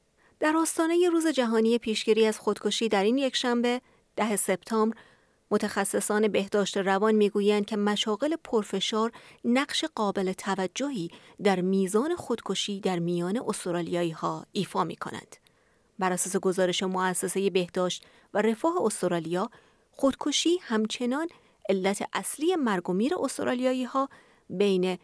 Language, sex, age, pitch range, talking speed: Persian, female, 30-49, 190-240 Hz, 120 wpm